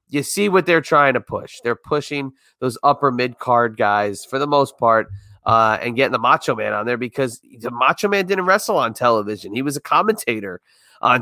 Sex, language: male, English